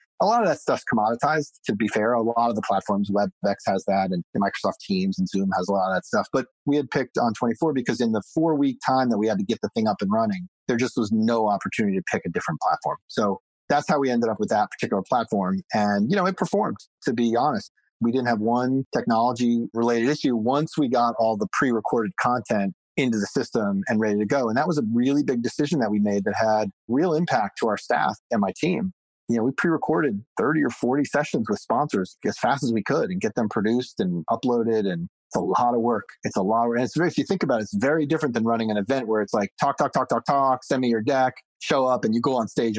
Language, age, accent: English, 30-49, American